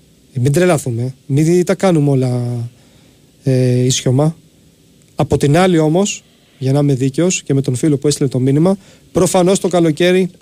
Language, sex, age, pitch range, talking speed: Greek, male, 30-49, 135-180 Hz, 155 wpm